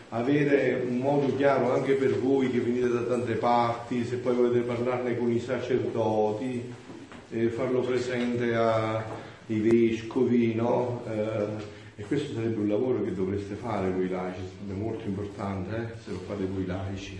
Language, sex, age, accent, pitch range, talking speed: Italian, male, 40-59, native, 100-125 Hz, 155 wpm